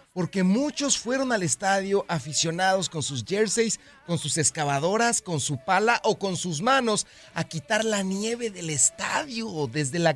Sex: male